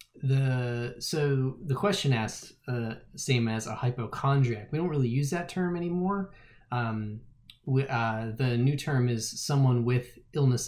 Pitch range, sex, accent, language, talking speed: 115-130 Hz, male, American, English, 150 wpm